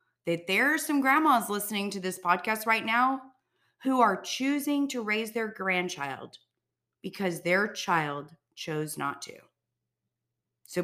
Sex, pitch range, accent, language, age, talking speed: female, 160-240 Hz, American, English, 30-49, 140 wpm